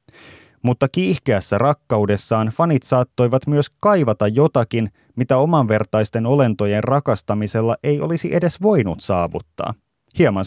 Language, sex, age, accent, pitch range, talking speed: Finnish, male, 30-49, native, 100-140 Hz, 105 wpm